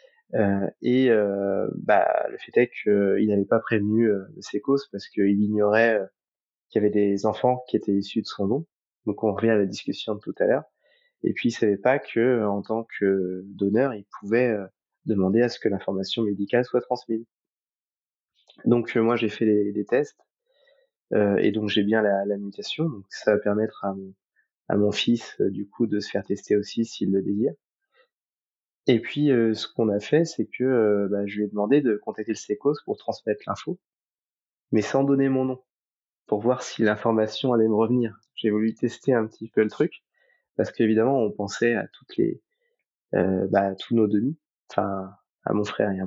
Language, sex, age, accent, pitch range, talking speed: French, male, 20-39, French, 100-125 Hz, 210 wpm